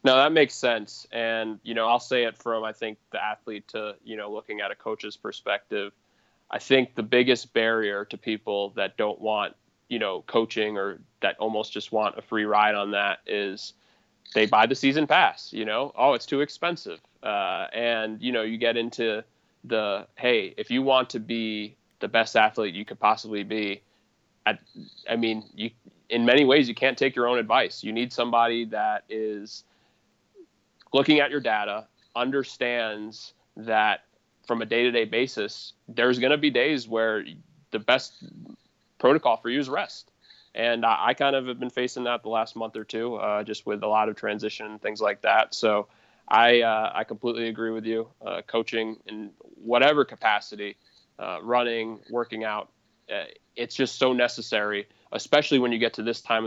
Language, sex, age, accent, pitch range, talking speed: English, male, 20-39, American, 110-125 Hz, 185 wpm